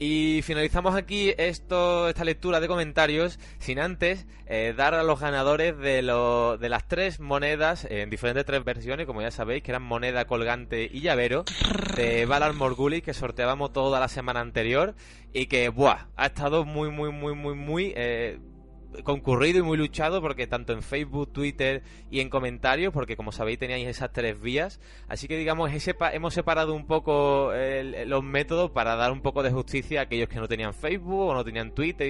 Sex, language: male, Spanish